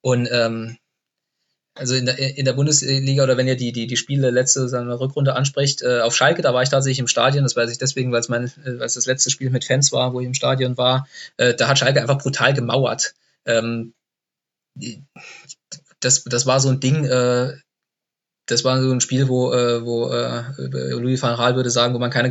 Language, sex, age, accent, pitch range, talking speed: German, male, 20-39, German, 125-150 Hz, 210 wpm